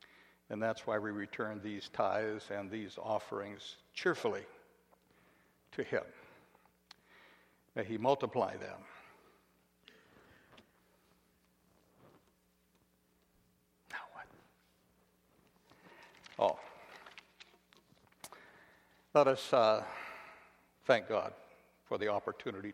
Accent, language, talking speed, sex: American, English, 75 wpm, male